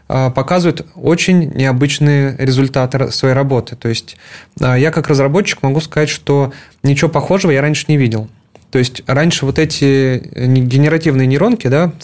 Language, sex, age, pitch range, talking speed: Russian, male, 20-39, 130-155 Hz, 140 wpm